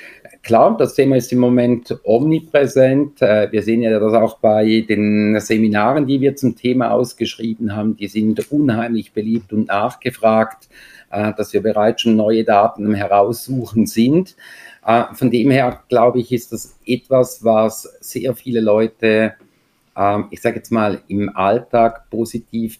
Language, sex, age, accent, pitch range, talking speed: German, male, 50-69, German, 105-125 Hz, 145 wpm